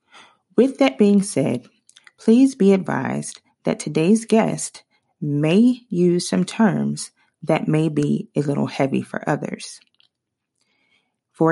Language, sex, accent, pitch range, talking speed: English, female, American, 145-210 Hz, 120 wpm